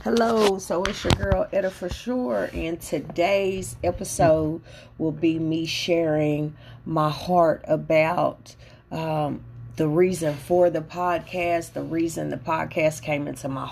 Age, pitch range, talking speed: 40-59, 145-170 Hz, 135 wpm